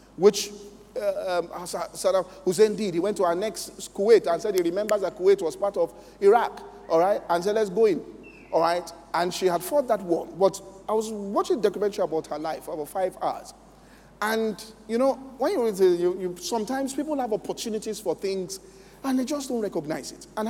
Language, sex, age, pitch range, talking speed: English, male, 40-59, 190-235 Hz, 210 wpm